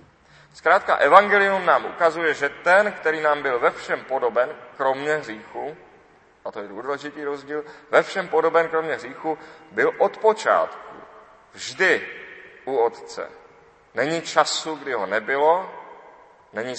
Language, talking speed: Czech, 130 wpm